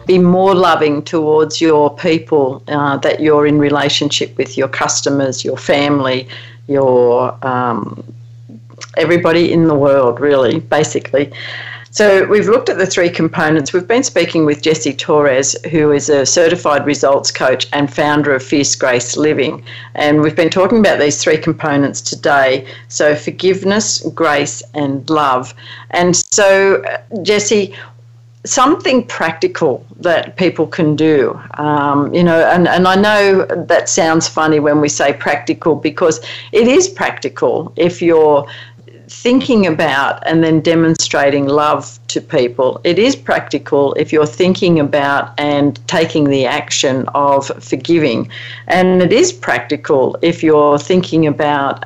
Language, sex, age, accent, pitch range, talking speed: English, female, 50-69, Australian, 135-170 Hz, 140 wpm